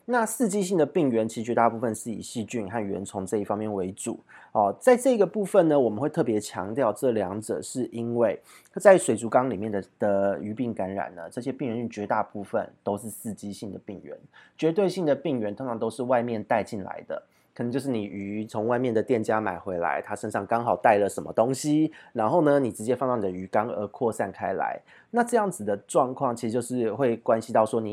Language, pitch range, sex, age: Chinese, 105-140 Hz, male, 30-49